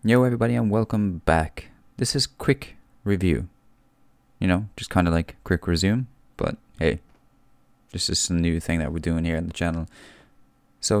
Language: English